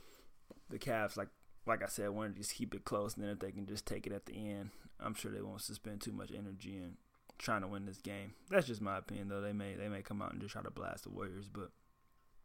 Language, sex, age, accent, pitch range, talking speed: English, male, 20-39, American, 100-115 Hz, 270 wpm